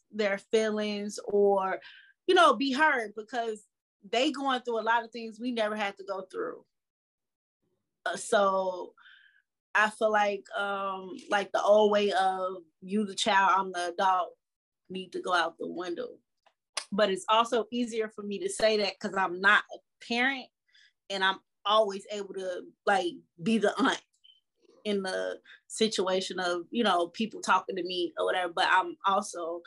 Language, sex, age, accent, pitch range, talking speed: English, female, 20-39, American, 180-220 Hz, 165 wpm